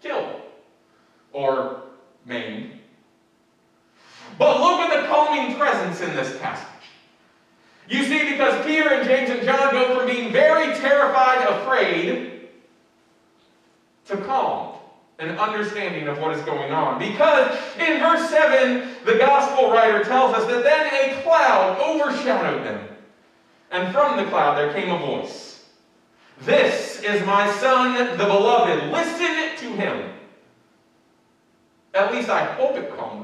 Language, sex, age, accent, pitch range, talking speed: English, male, 40-59, American, 180-270 Hz, 130 wpm